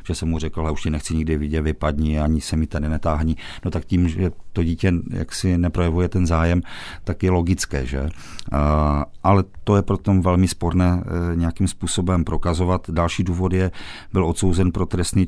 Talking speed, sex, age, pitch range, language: 185 wpm, male, 50-69, 80-90 Hz, Czech